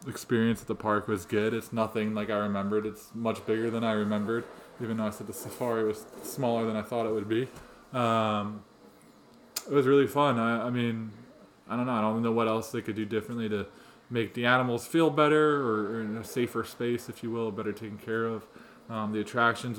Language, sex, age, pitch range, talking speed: English, male, 20-39, 105-120 Hz, 220 wpm